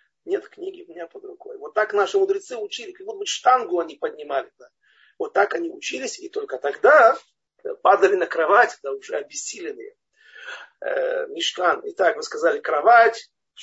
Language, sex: Russian, male